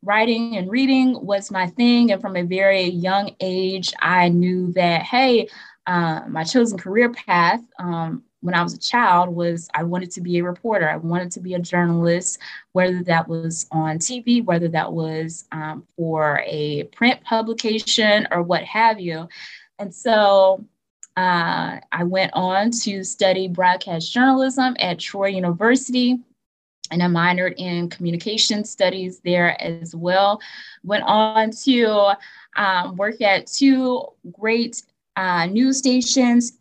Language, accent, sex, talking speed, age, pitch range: English, American, female, 150 wpm, 20-39, 180-225 Hz